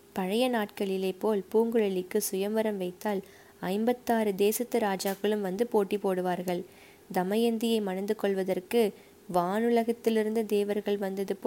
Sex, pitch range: female, 200-235 Hz